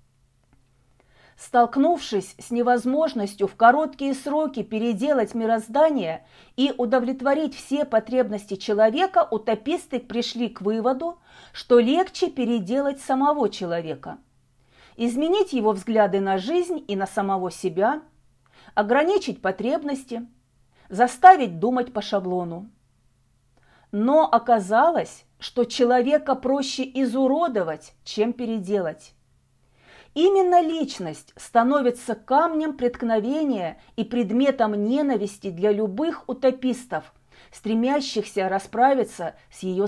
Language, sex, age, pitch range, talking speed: Russian, female, 40-59, 185-265 Hz, 90 wpm